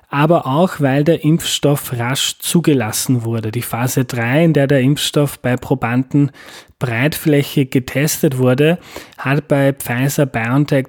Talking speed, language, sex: 125 wpm, German, male